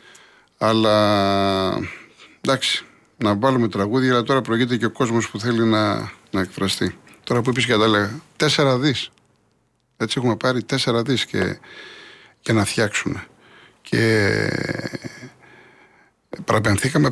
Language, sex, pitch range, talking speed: Greek, male, 105-130 Hz, 120 wpm